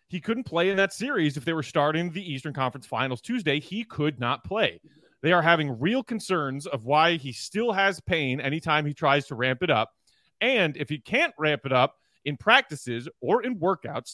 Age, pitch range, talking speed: 30-49, 140-180 Hz, 210 wpm